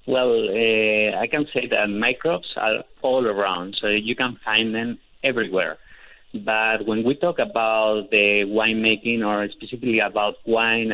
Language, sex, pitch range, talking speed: English, male, 110-140 Hz, 150 wpm